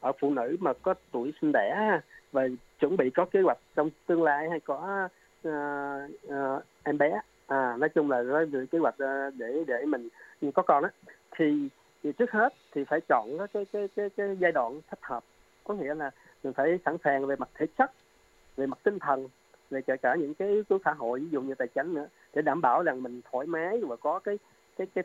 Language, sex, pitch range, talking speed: Vietnamese, male, 130-175 Hz, 220 wpm